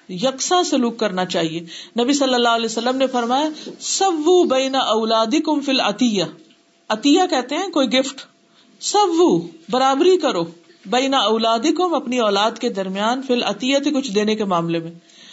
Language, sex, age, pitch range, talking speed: Urdu, female, 50-69, 200-265 Hz, 155 wpm